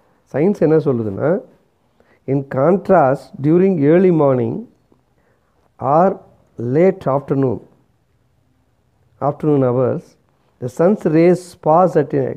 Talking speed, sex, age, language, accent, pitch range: 90 wpm, male, 50-69, Tamil, native, 130-175 Hz